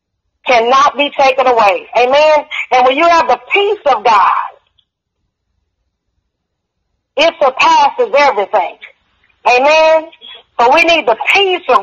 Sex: female